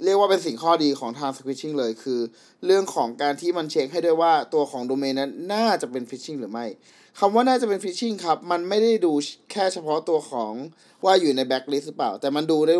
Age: 20-39